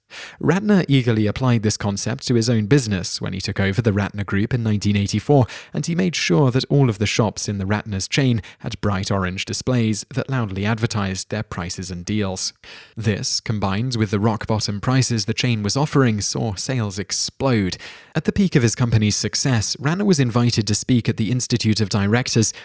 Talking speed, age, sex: 190 wpm, 20-39, male